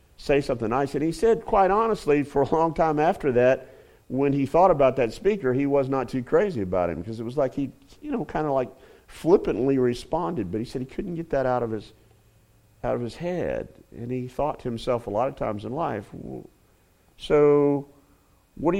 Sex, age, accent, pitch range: male, 50-69, American, 115-145 Hz